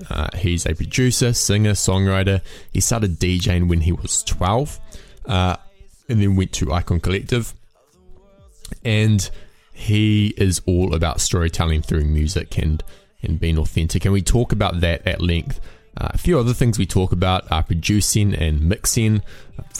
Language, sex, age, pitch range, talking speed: English, male, 20-39, 85-105 Hz, 160 wpm